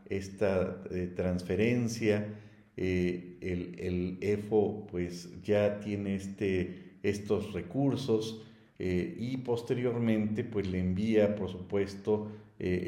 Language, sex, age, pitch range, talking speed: Spanish, male, 50-69, 95-110 Hz, 100 wpm